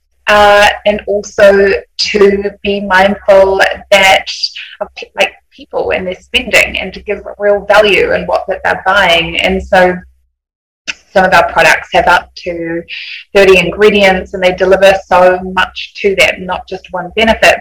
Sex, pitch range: female, 175-205 Hz